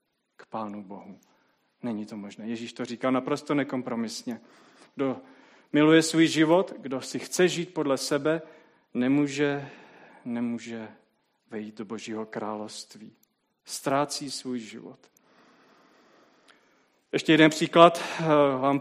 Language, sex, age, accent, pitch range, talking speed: Czech, male, 40-59, native, 125-155 Hz, 110 wpm